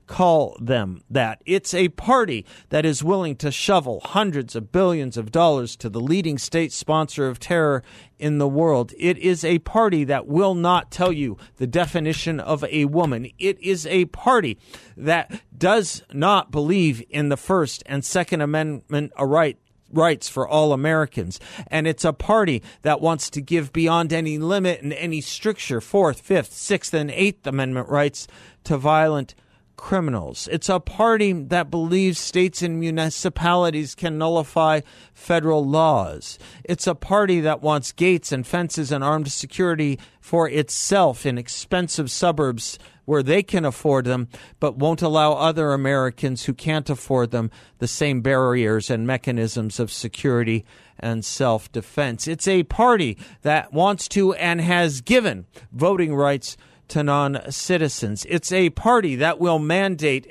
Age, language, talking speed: 40-59, English, 150 wpm